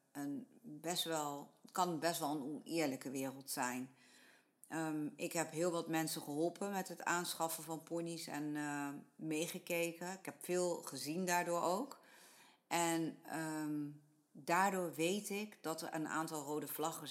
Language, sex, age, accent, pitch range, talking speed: Dutch, female, 50-69, Dutch, 150-190 Hz, 145 wpm